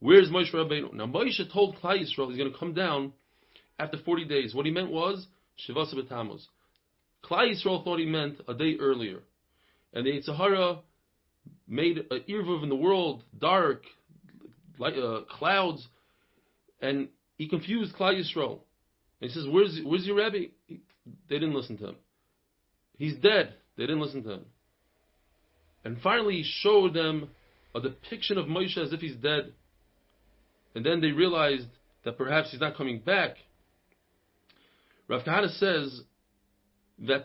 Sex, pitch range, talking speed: male, 135-185 Hz, 150 wpm